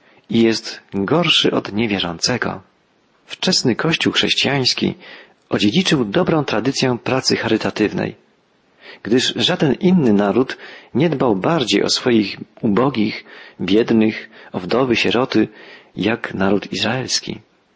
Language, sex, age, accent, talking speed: Polish, male, 40-59, native, 100 wpm